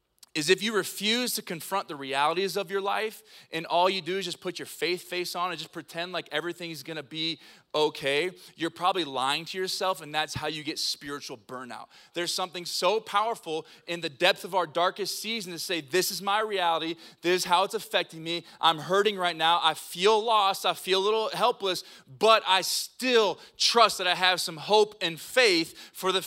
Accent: American